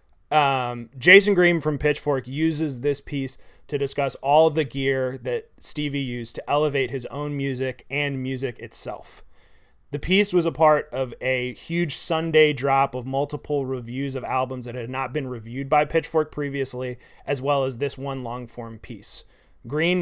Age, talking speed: 30-49, 170 wpm